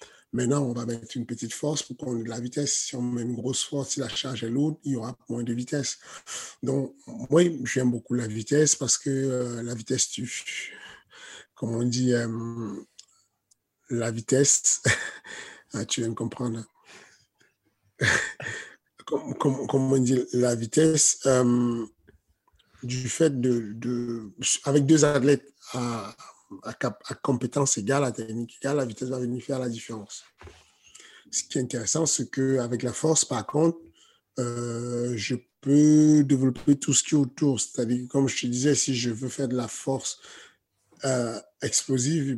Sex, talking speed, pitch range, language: male, 160 wpm, 120-135 Hz, French